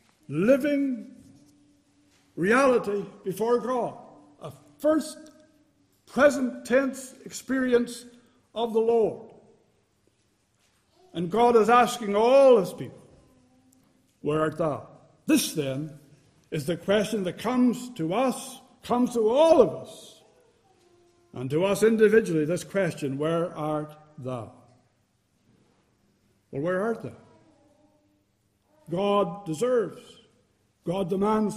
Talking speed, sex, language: 100 wpm, male, English